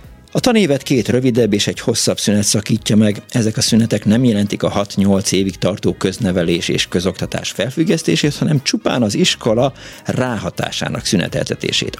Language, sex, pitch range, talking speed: Hungarian, male, 95-120 Hz, 145 wpm